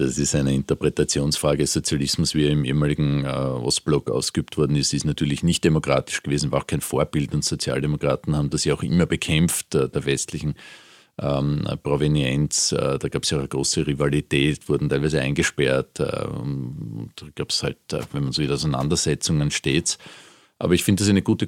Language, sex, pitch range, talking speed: German, male, 70-85 Hz, 190 wpm